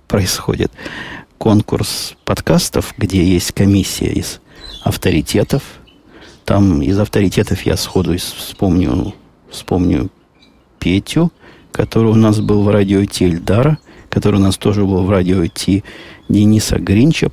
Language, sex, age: Russian, male, 50-69